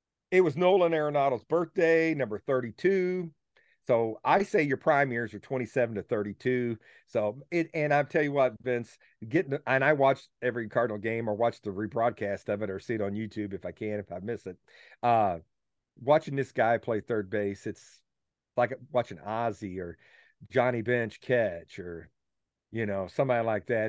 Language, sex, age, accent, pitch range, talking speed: English, male, 40-59, American, 105-140 Hz, 180 wpm